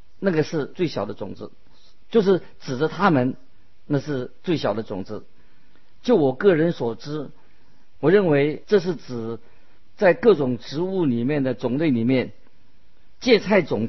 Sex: male